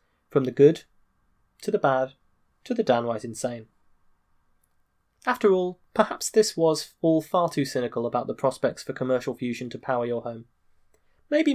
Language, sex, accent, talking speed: English, male, British, 155 wpm